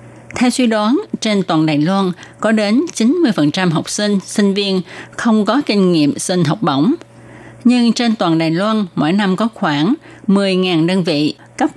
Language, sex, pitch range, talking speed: Vietnamese, female, 160-230 Hz, 175 wpm